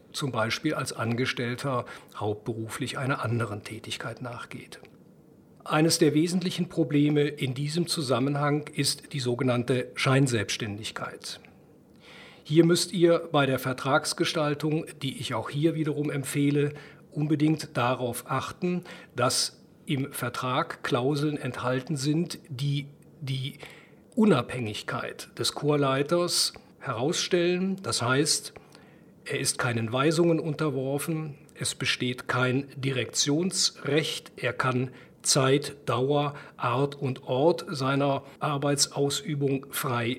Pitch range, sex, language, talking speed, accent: 130-155 Hz, male, German, 100 wpm, German